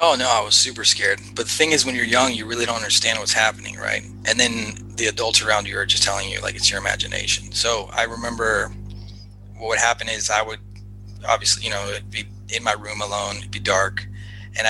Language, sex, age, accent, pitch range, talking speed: English, male, 30-49, American, 100-115 Hz, 230 wpm